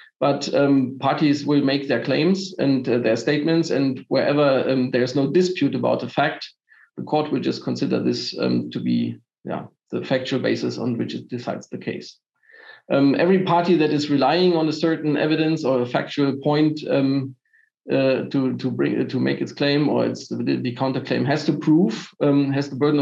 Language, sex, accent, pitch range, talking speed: English, male, German, 125-155 Hz, 195 wpm